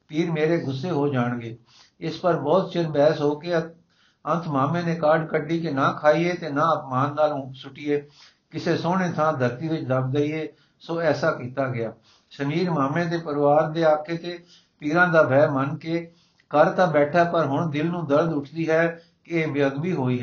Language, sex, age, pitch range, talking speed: Punjabi, male, 60-79, 140-170 Hz, 180 wpm